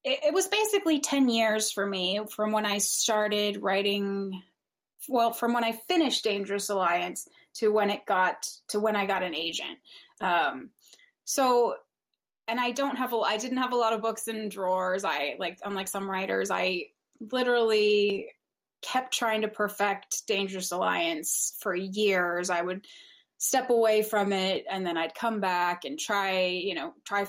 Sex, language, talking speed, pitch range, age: female, English, 165 wpm, 190-235 Hz, 20-39